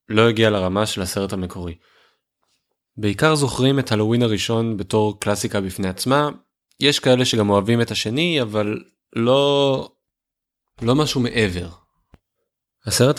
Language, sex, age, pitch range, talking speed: Hebrew, male, 20-39, 95-115 Hz, 125 wpm